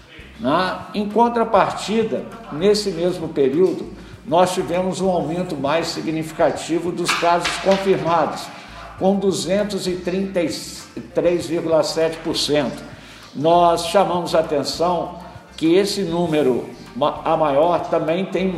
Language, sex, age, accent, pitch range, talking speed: Portuguese, male, 60-79, Brazilian, 160-190 Hz, 85 wpm